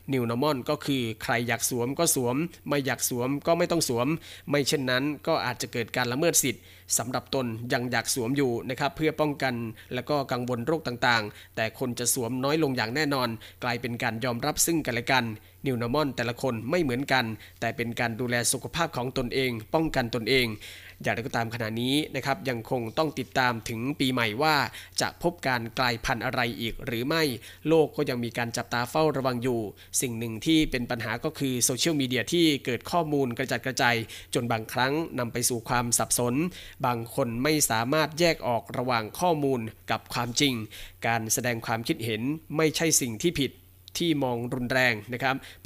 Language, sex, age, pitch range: Thai, male, 20-39, 115-145 Hz